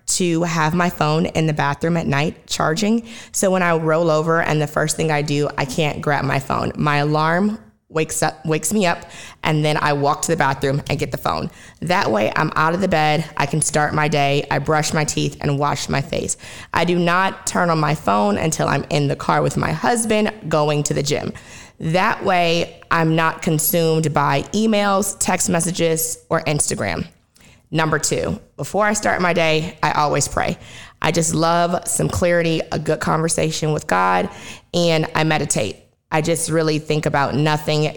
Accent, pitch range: American, 150-170 Hz